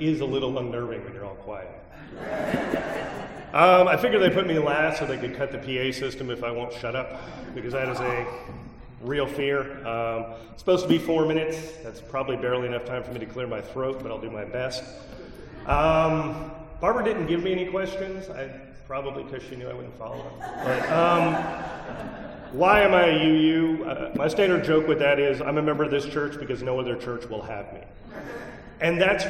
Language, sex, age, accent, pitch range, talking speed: English, male, 40-59, American, 125-160 Hz, 205 wpm